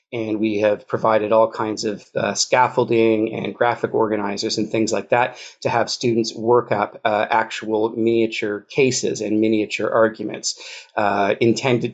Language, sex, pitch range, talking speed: English, male, 105-120 Hz, 150 wpm